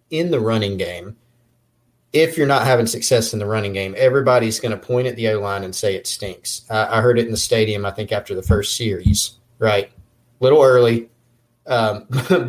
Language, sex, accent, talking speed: English, male, American, 200 wpm